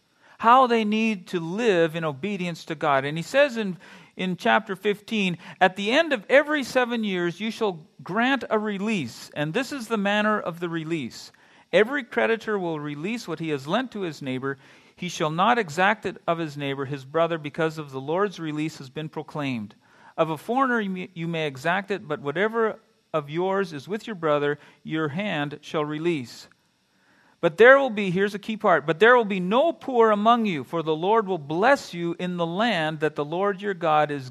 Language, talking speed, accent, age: English, 200 wpm, American, 40-59